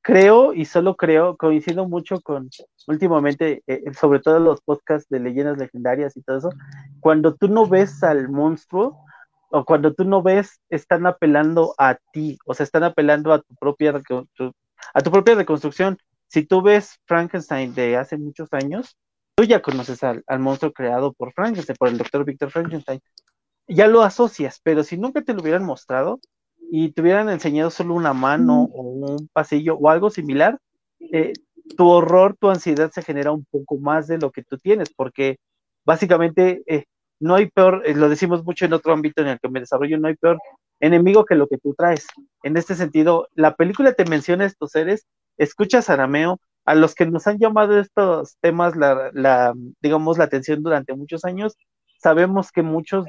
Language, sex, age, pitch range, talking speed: Spanish, male, 30-49, 145-185 Hz, 185 wpm